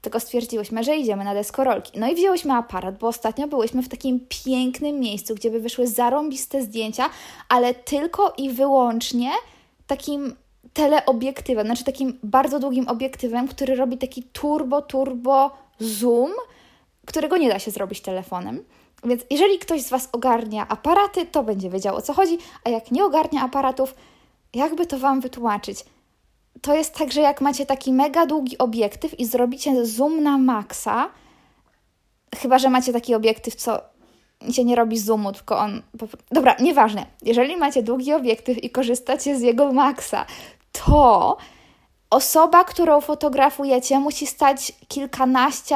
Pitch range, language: 240-285 Hz, Polish